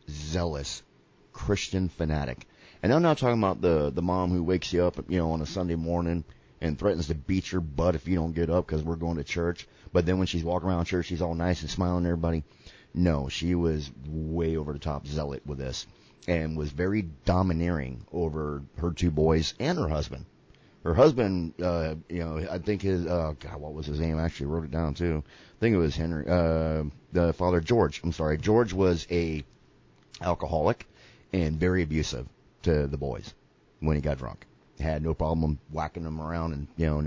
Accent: American